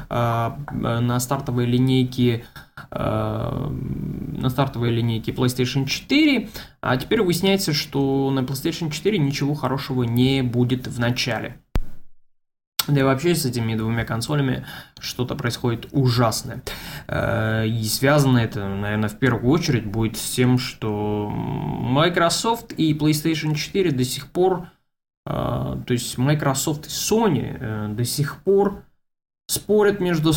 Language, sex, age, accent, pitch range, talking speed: Russian, male, 20-39, native, 120-150 Hz, 115 wpm